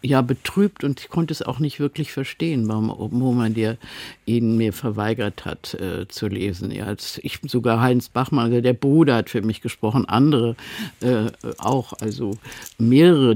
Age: 50-69